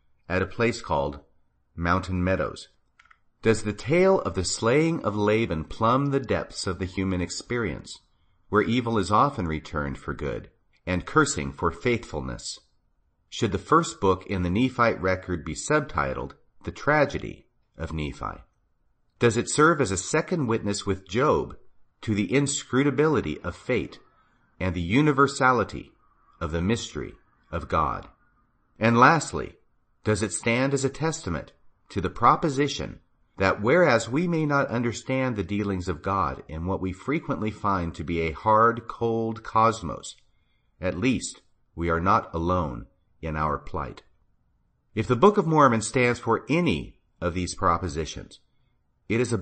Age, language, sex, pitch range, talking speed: 40-59, English, male, 85-120 Hz, 150 wpm